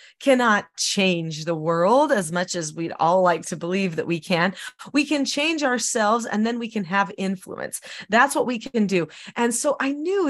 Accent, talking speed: American, 200 wpm